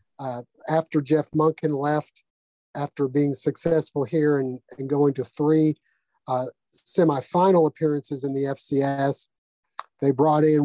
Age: 50-69